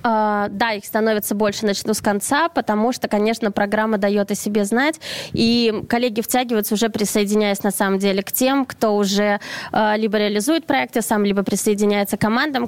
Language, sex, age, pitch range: Russian, female, 20-39, 215-270 Hz